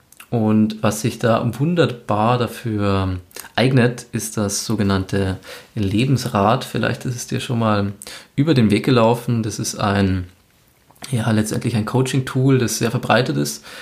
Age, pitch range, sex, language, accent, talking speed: 20-39, 105-130 Hz, male, German, German, 135 wpm